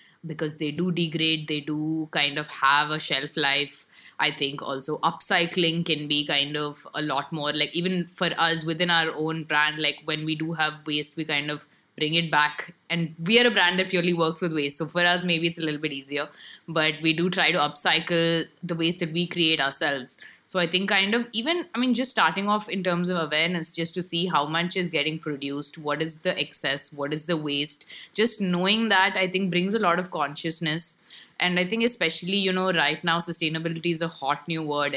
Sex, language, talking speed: female, English, 220 wpm